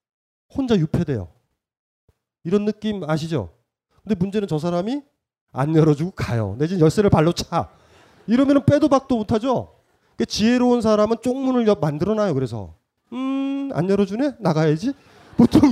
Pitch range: 140-215 Hz